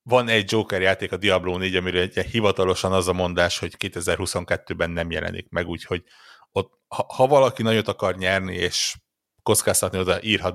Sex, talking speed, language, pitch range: male, 155 wpm, Hungarian, 90-105 Hz